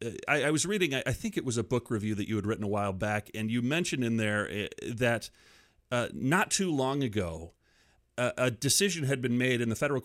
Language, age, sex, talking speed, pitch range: English, 30-49, male, 245 wpm, 105-140 Hz